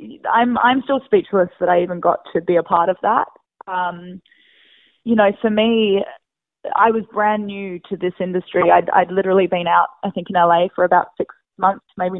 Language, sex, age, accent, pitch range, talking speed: English, female, 20-39, Australian, 180-210 Hz, 195 wpm